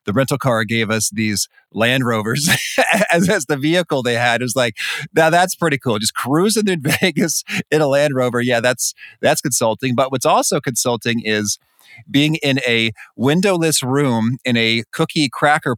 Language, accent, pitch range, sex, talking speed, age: English, American, 110-150 Hz, male, 180 wpm, 40-59